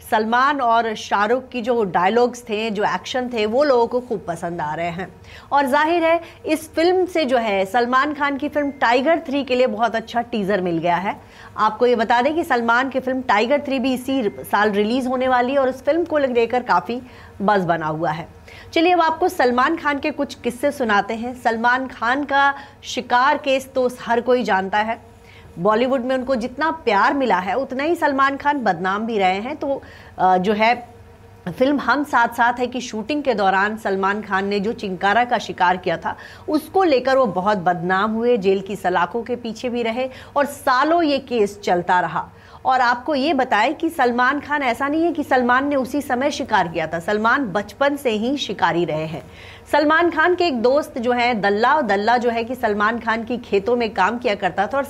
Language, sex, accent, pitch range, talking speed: English, female, Indian, 210-275 Hz, 180 wpm